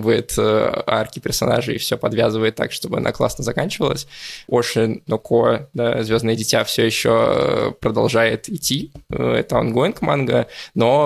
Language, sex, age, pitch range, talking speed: Russian, male, 20-39, 115-125 Hz, 130 wpm